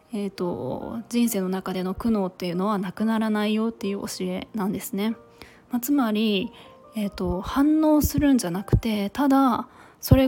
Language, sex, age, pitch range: Japanese, female, 20-39, 195-255 Hz